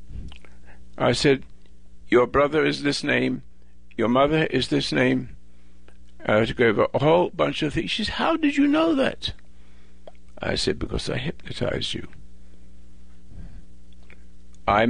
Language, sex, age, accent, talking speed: English, male, 60-79, American, 135 wpm